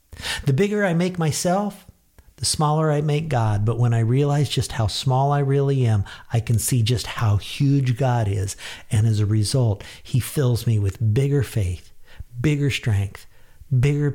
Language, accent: English, American